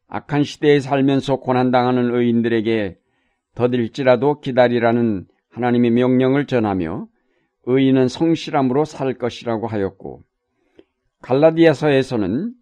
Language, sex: Korean, male